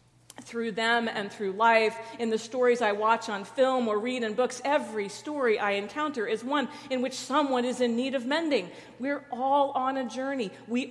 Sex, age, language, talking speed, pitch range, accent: female, 40-59, English, 200 wpm, 210-255 Hz, American